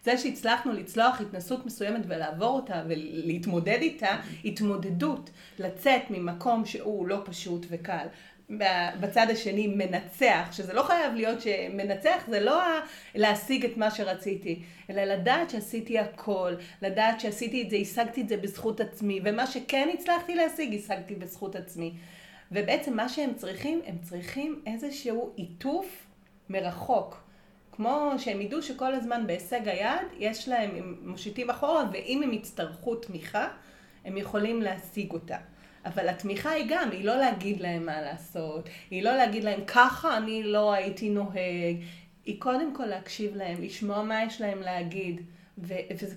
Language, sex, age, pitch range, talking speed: Hebrew, female, 30-49, 185-250 Hz, 140 wpm